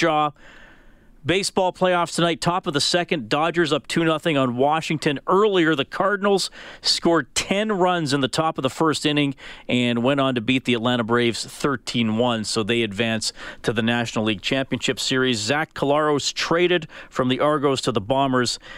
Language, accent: English, American